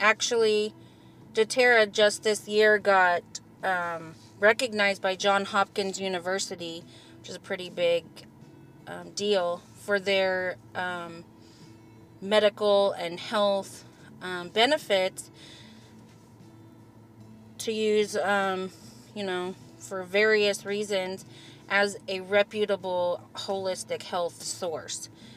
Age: 30-49